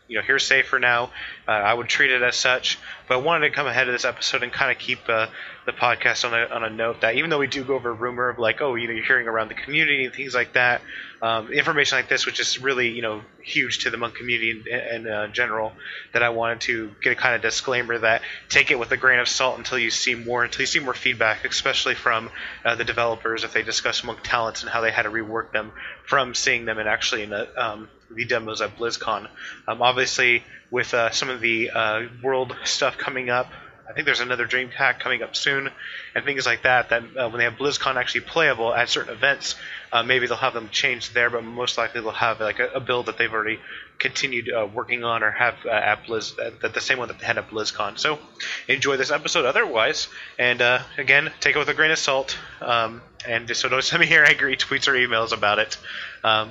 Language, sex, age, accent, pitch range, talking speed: English, male, 20-39, American, 115-130 Hz, 250 wpm